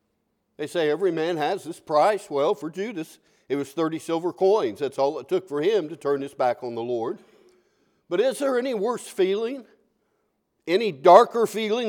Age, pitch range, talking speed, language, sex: 60-79, 140-215 Hz, 185 wpm, English, male